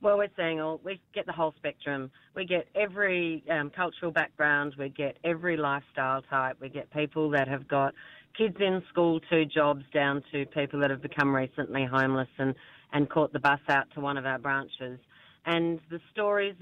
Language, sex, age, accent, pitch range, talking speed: English, female, 40-59, Australian, 140-175 Hz, 190 wpm